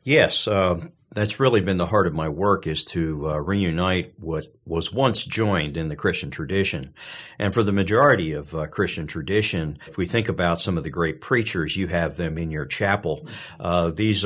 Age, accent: 50-69, American